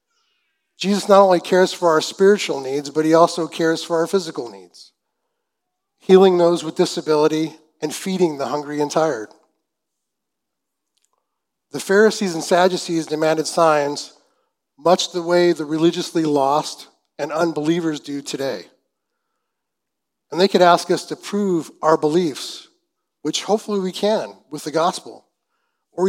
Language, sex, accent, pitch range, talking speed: English, male, American, 150-190 Hz, 135 wpm